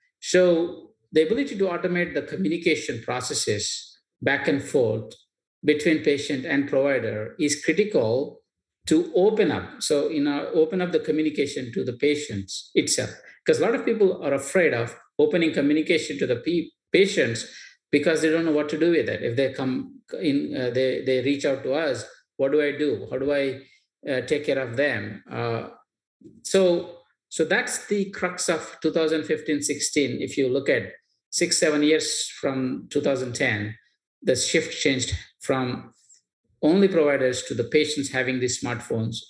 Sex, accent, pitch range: male, Indian, 130-185 Hz